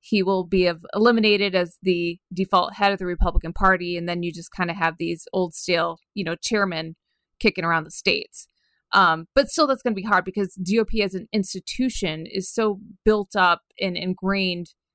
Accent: American